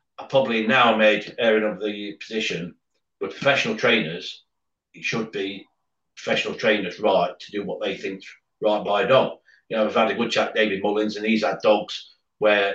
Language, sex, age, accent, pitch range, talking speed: English, male, 40-59, British, 105-145 Hz, 190 wpm